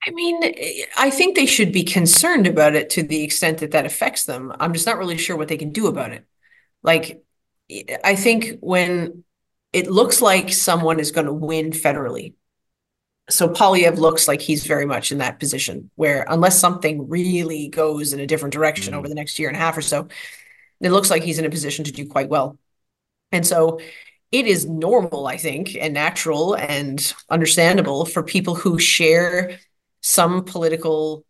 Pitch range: 155-185 Hz